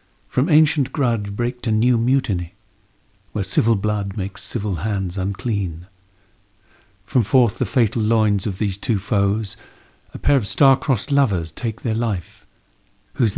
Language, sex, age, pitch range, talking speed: English, male, 50-69, 95-120 Hz, 145 wpm